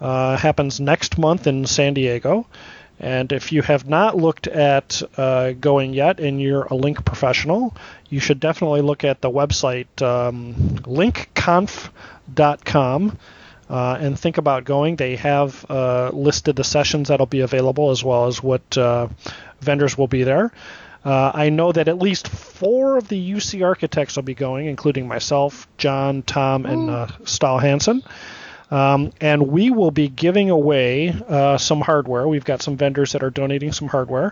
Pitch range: 130-155 Hz